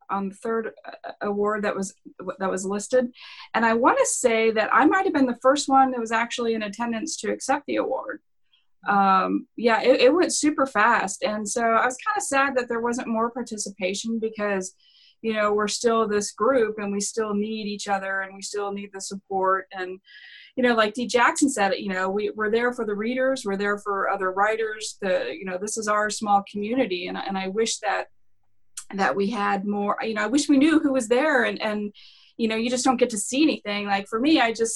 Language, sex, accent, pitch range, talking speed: English, female, American, 195-230 Hz, 225 wpm